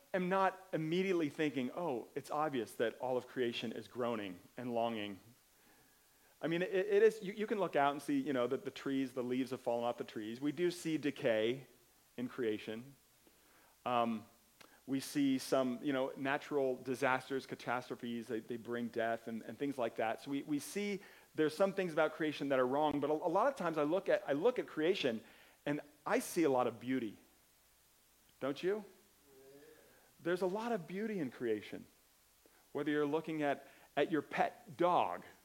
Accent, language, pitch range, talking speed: American, English, 125-165 Hz, 190 wpm